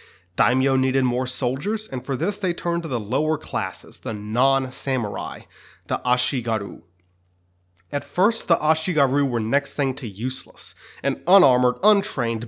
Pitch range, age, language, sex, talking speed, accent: 115-145 Hz, 30-49, English, male, 140 wpm, American